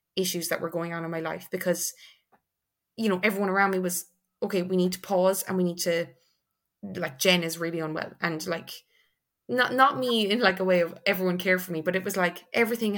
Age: 20-39